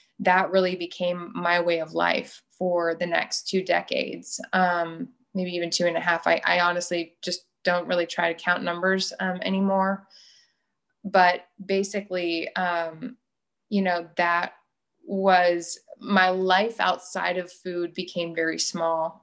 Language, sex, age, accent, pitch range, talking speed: English, female, 20-39, American, 175-195 Hz, 145 wpm